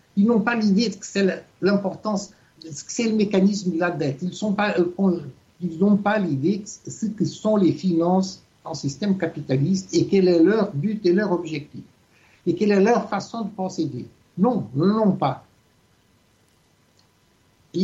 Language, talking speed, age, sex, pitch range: French, 165 wpm, 60-79, male, 135-195 Hz